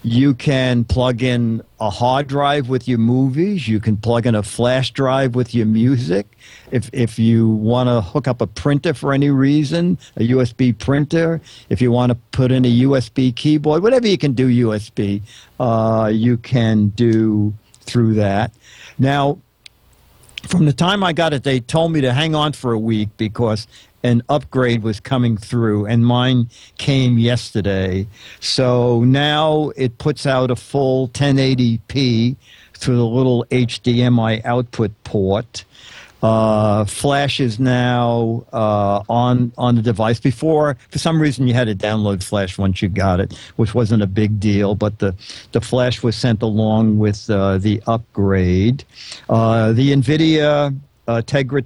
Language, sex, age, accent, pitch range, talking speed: English, male, 50-69, American, 110-135 Hz, 160 wpm